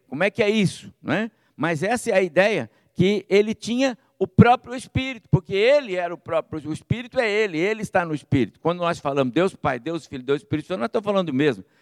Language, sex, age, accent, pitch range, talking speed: Portuguese, male, 60-79, Brazilian, 150-200 Hz, 235 wpm